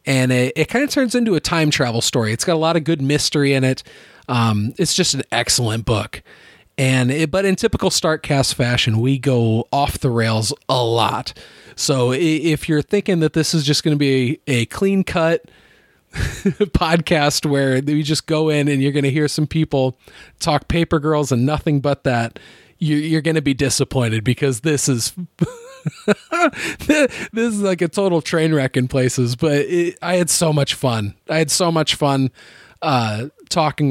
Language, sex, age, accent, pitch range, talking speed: English, male, 30-49, American, 130-165 Hz, 185 wpm